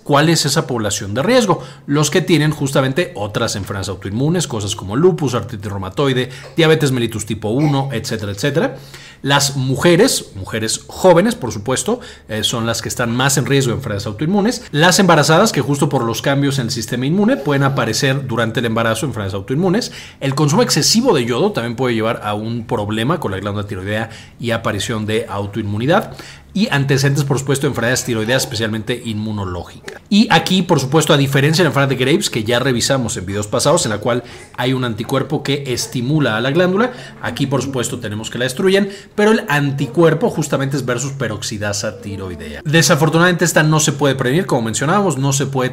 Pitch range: 110-150 Hz